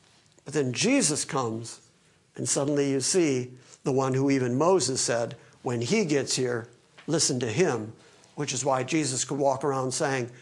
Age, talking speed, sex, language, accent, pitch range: 50-69, 165 wpm, male, English, American, 135-195 Hz